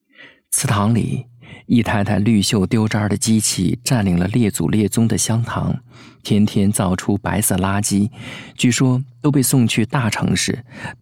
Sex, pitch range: male, 100-125 Hz